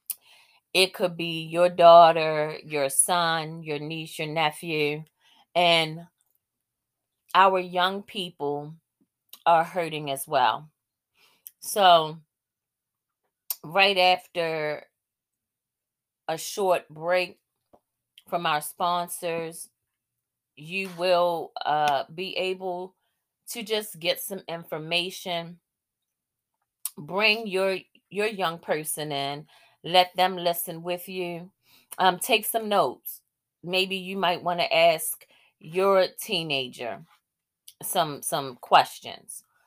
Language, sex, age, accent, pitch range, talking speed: English, female, 30-49, American, 150-185 Hz, 95 wpm